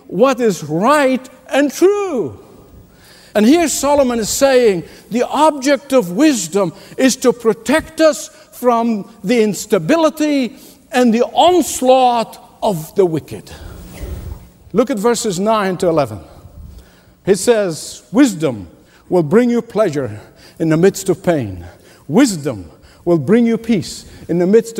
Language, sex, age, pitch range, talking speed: English, male, 60-79, 155-245 Hz, 130 wpm